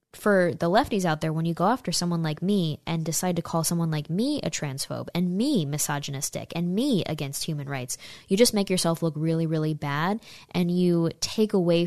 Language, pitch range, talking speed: English, 150-180 Hz, 205 wpm